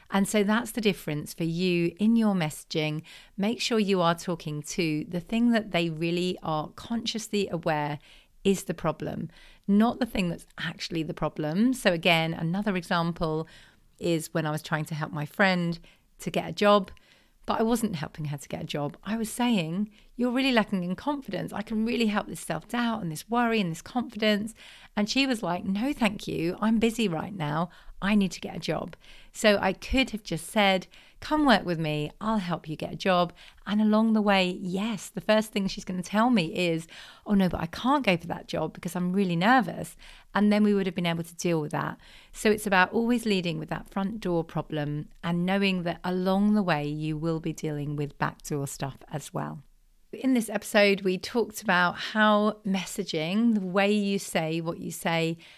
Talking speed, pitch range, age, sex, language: 205 wpm, 165-210 Hz, 40-59, female, English